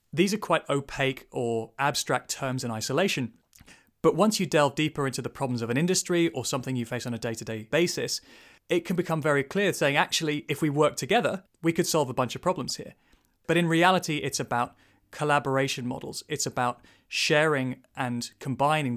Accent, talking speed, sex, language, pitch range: British, 185 wpm, male, English, 125-155 Hz